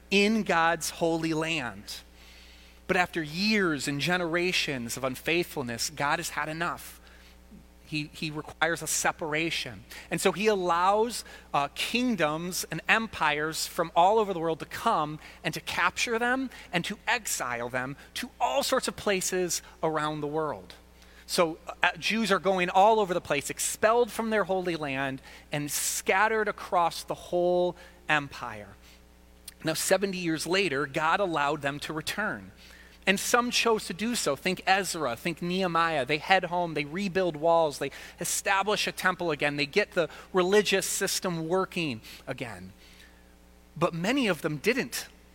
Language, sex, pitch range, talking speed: English, male, 145-195 Hz, 150 wpm